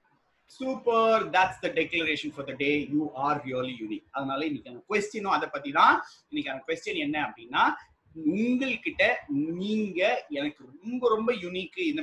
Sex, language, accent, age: male, Tamil, native, 30-49